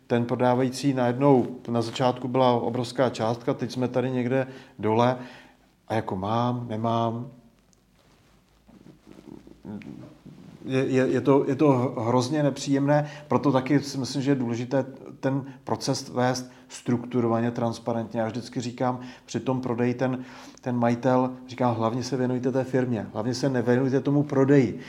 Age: 40-59